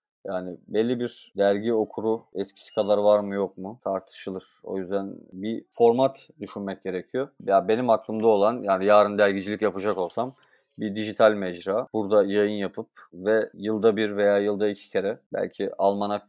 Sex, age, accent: male, 30-49, native